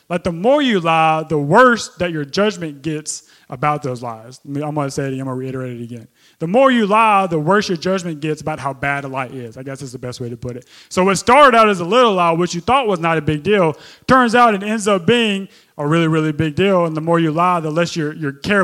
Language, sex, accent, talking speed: English, male, American, 270 wpm